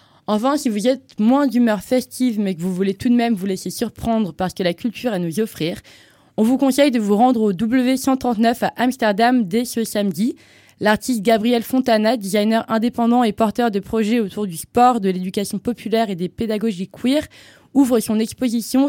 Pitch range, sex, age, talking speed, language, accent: 200-240 Hz, female, 20-39, 190 wpm, French, French